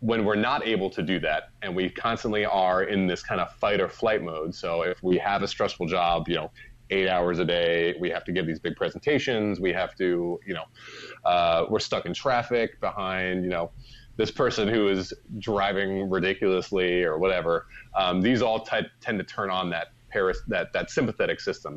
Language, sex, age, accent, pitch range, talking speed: English, male, 30-49, American, 90-105 Hz, 200 wpm